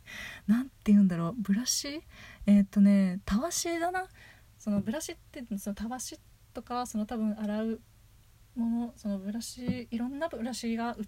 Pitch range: 180-230 Hz